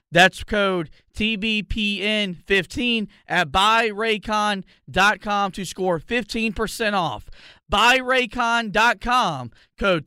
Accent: American